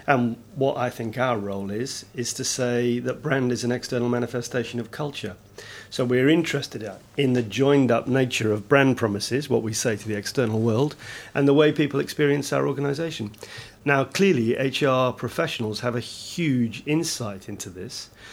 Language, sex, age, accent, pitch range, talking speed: English, male, 40-59, British, 115-135 Hz, 170 wpm